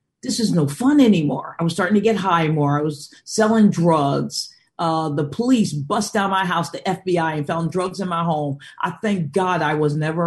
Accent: American